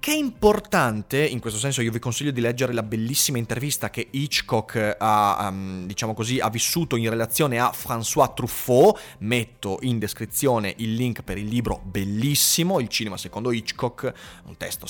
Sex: male